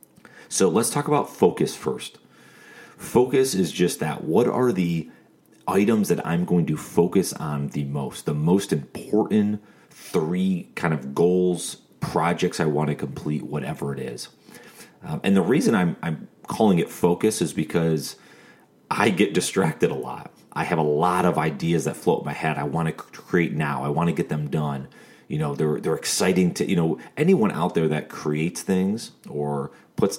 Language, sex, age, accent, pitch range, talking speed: English, male, 30-49, American, 75-90 Hz, 180 wpm